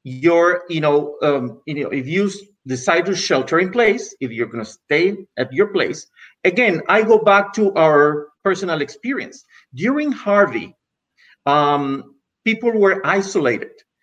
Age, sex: 50-69, male